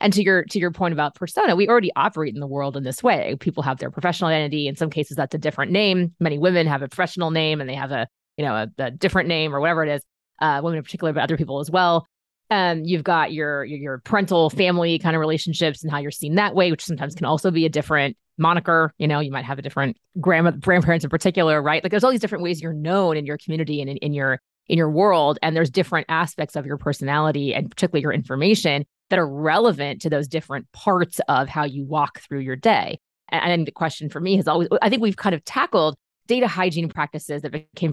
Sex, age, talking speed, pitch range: female, 20-39, 250 wpm, 145-180 Hz